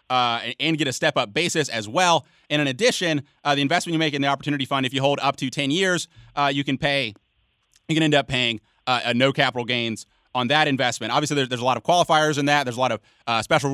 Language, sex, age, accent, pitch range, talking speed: English, male, 30-49, American, 125-150 Hz, 260 wpm